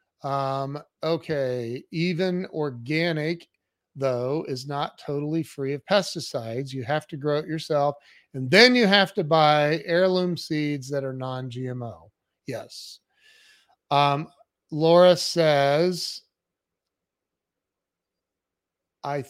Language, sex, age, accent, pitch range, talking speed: English, male, 40-59, American, 130-165 Hz, 105 wpm